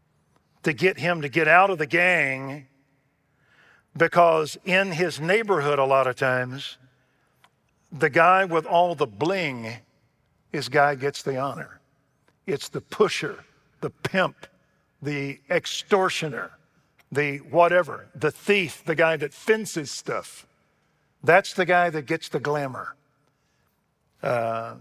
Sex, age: male, 50-69